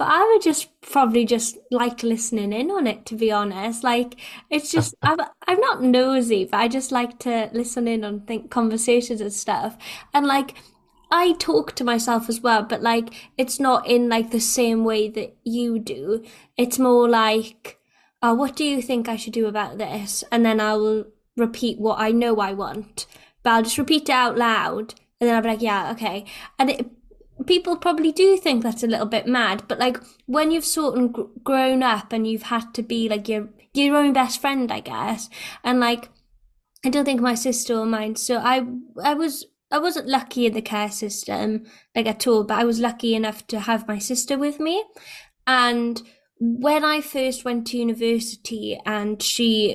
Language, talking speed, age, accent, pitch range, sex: English, 200 wpm, 10-29, British, 220-260 Hz, female